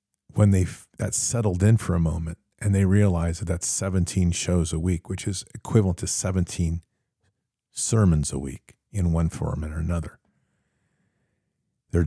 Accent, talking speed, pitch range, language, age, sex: American, 150 wpm, 85-105 Hz, English, 50-69, male